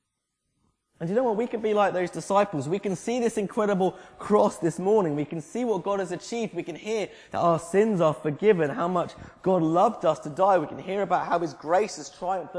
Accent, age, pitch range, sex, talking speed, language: British, 20-39, 150-205 Hz, male, 235 wpm, English